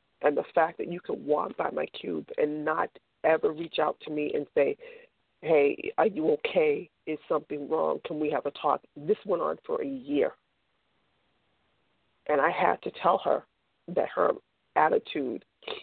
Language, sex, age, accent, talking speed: English, female, 40-59, American, 175 wpm